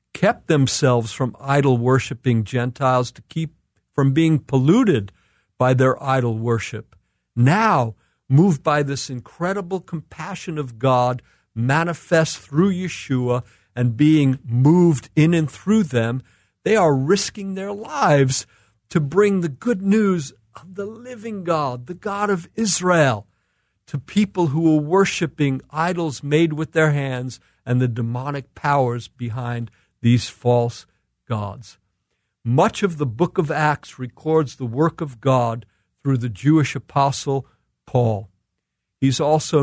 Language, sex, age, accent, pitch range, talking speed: English, male, 50-69, American, 120-155 Hz, 130 wpm